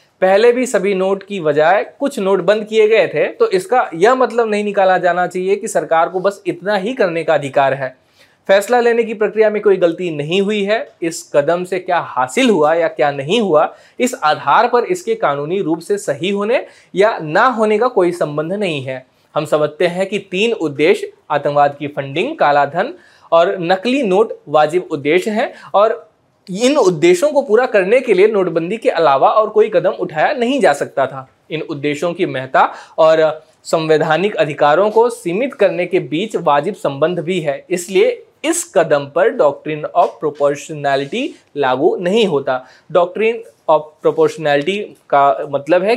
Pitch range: 150-225 Hz